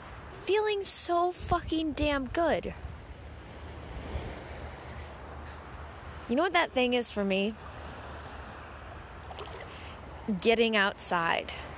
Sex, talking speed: female, 75 wpm